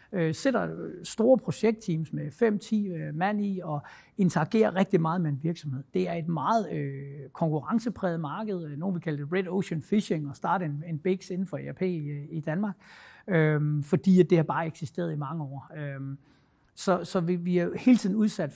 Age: 60-79